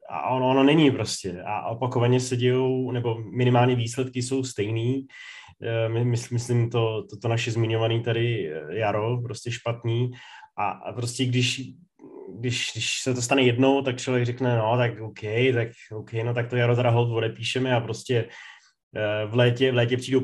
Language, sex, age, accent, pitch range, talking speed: Czech, male, 20-39, native, 115-125 Hz, 160 wpm